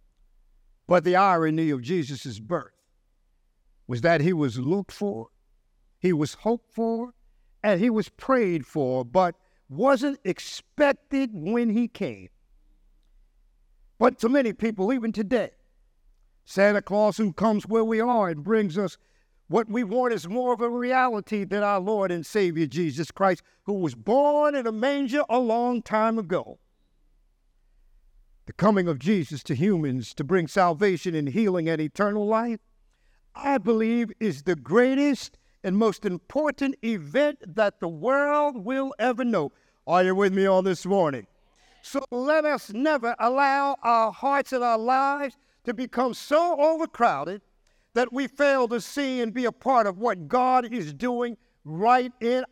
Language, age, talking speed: English, 60-79, 155 wpm